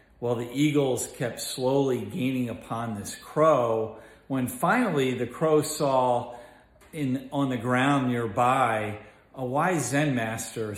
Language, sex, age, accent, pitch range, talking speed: English, male, 40-59, American, 110-135 Hz, 130 wpm